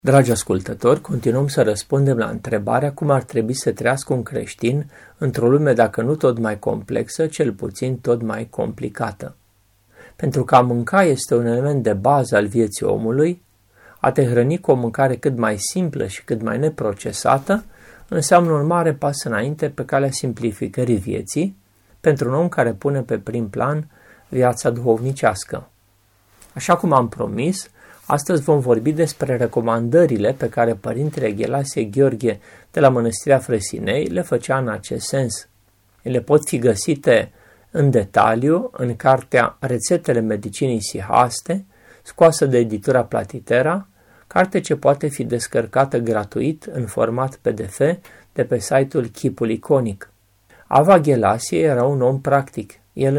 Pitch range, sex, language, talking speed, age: 115-145 Hz, male, Romanian, 145 wpm, 30-49